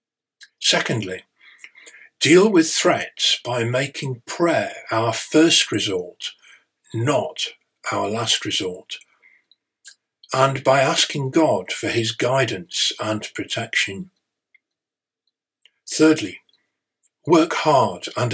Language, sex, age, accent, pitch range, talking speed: English, male, 50-69, British, 115-155 Hz, 90 wpm